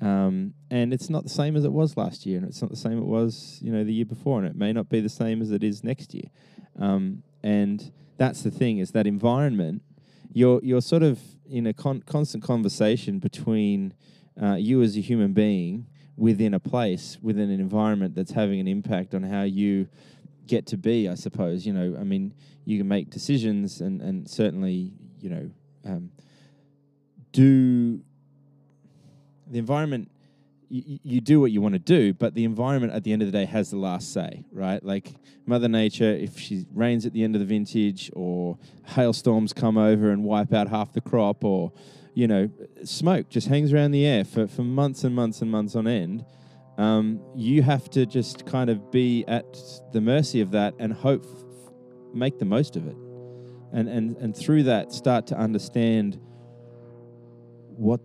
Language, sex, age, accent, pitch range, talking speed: English, male, 20-39, Australian, 105-135 Hz, 190 wpm